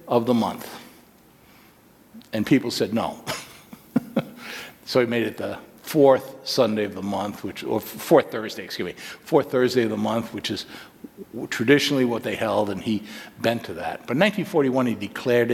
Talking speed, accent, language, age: 170 wpm, American, English, 60-79